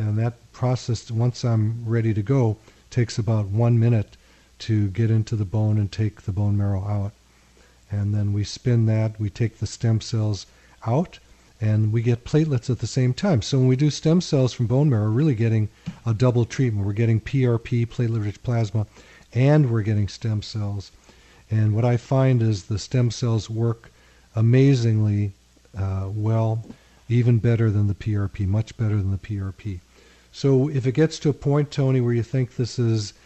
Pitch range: 105-125 Hz